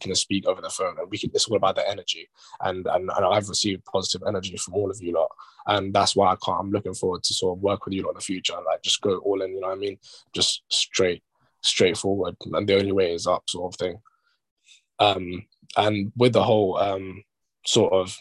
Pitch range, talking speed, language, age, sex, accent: 95-130 Hz, 245 wpm, English, 10-29, male, British